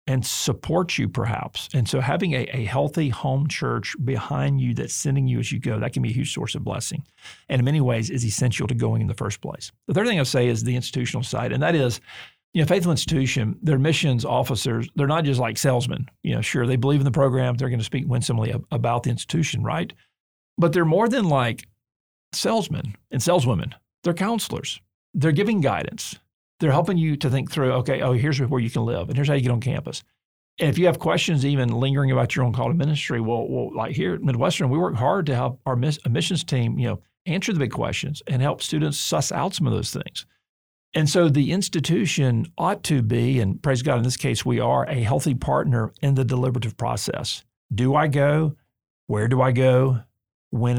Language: English